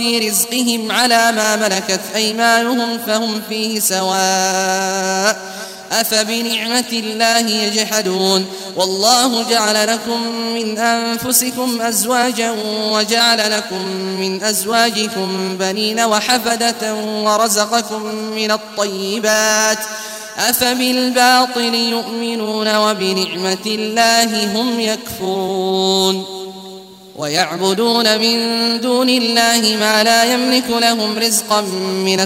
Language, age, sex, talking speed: Arabic, 20-39, male, 80 wpm